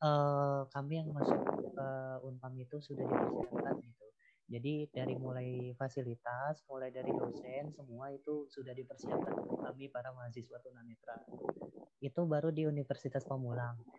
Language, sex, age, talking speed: Indonesian, female, 20-39, 135 wpm